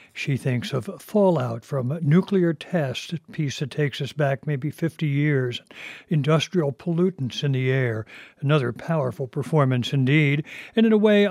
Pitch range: 135-170 Hz